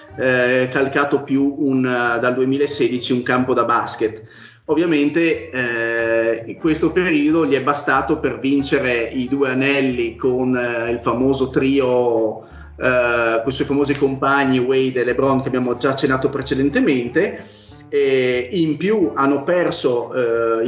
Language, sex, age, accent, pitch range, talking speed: Italian, male, 30-49, native, 125-150 Hz, 140 wpm